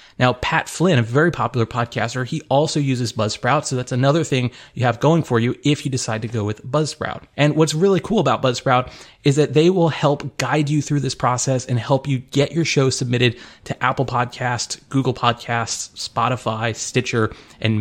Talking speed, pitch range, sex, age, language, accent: 195 wpm, 120-145 Hz, male, 30-49, English, American